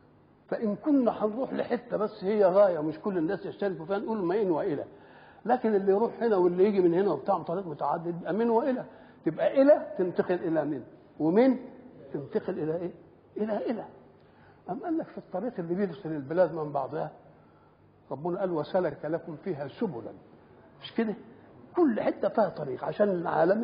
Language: Arabic